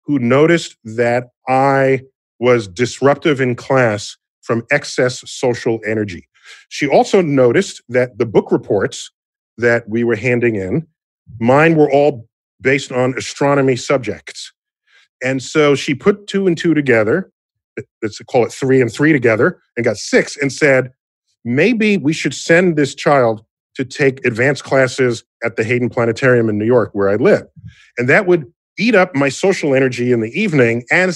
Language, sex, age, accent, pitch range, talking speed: English, male, 40-59, American, 120-155 Hz, 160 wpm